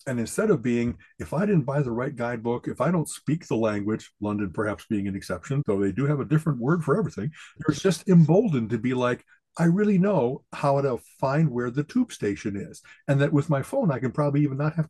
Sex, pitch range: male, 120-160 Hz